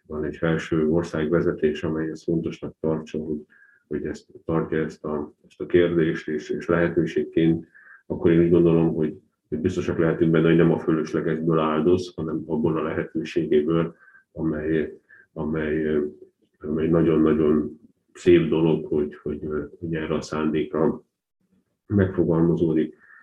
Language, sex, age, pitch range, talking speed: Hungarian, male, 30-49, 80-85 Hz, 130 wpm